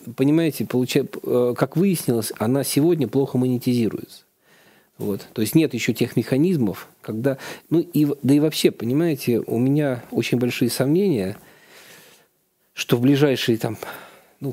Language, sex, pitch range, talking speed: Russian, male, 110-135 Hz, 120 wpm